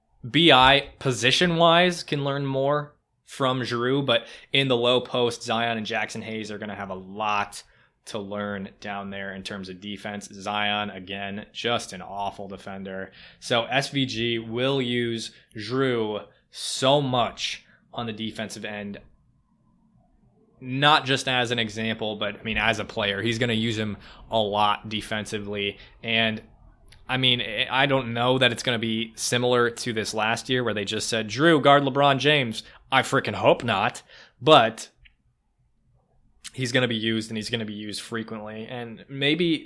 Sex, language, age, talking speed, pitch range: male, English, 20-39, 165 wpm, 105-130 Hz